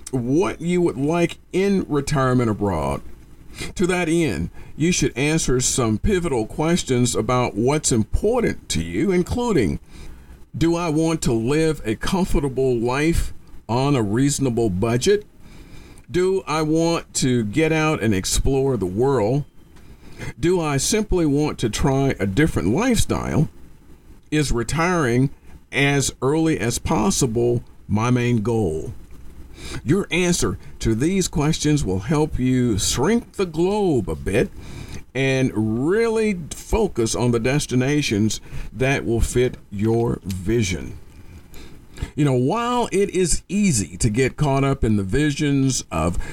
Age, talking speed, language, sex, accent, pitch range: 50-69, 130 wpm, English, male, American, 115-160 Hz